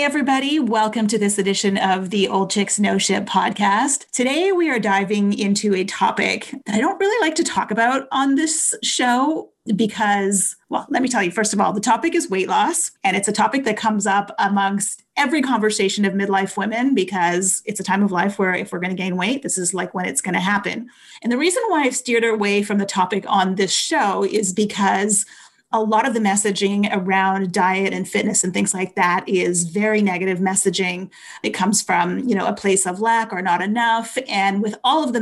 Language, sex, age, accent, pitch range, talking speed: English, female, 30-49, American, 195-235 Hz, 215 wpm